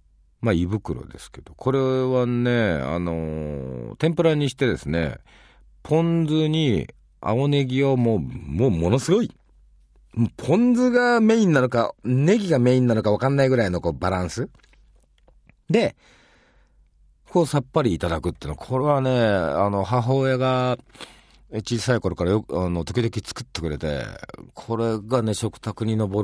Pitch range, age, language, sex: 85-135 Hz, 40-59, Japanese, male